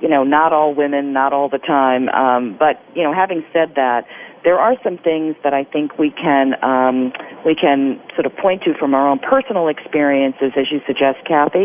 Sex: female